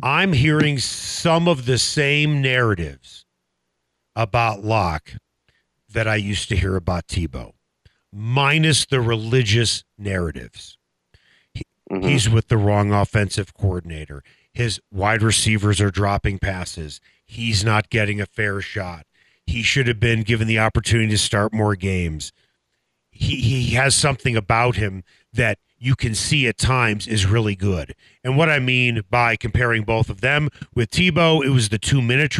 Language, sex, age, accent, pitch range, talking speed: English, male, 40-59, American, 100-130 Hz, 145 wpm